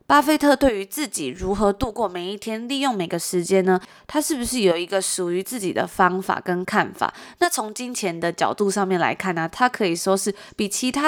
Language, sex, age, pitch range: Chinese, female, 20-39, 185-240 Hz